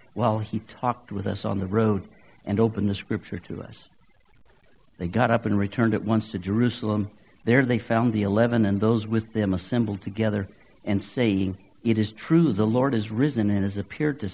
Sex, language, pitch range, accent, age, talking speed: male, English, 100-120 Hz, American, 60-79, 195 wpm